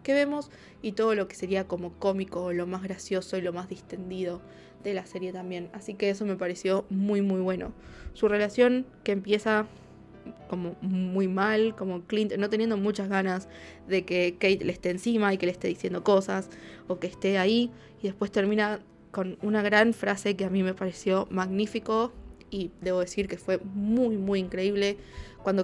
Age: 20-39